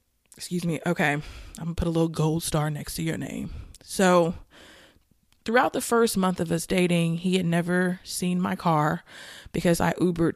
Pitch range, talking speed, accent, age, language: 160-185 Hz, 185 wpm, American, 20-39, English